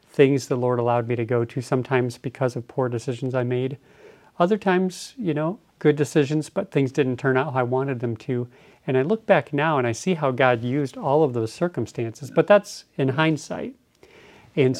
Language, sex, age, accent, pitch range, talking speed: English, male, 40-59, American, 125-155 Hz, 205 wpm